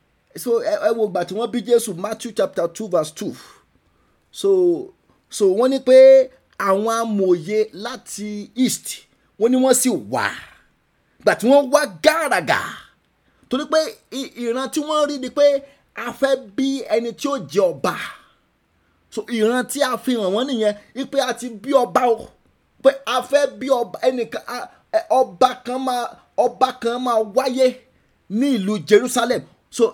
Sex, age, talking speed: male, 30-49, 105 wpm